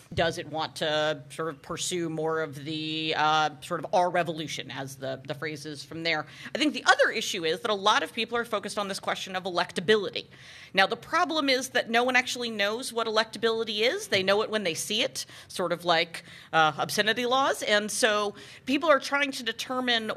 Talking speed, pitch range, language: 215 wpm, 160-220 Hz, English